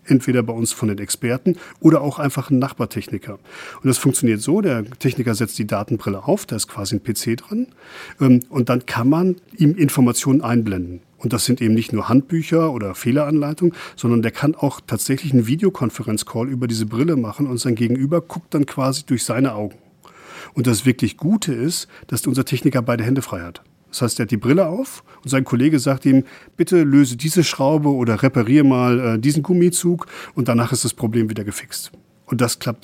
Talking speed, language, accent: 195 wpm, German, German